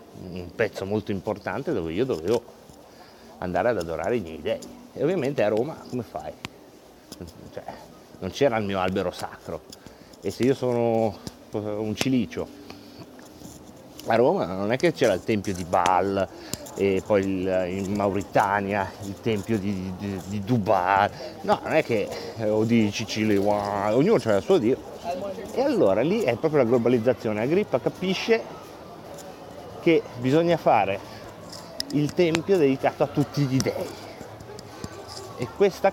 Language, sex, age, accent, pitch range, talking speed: Italian, male, 30-49, native, 100-145 Hz, 140 wpm